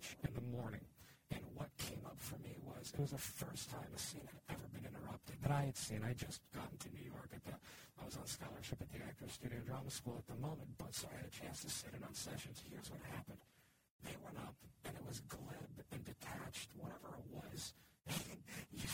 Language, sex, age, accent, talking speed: English, male, 40-59, American, 235 wpm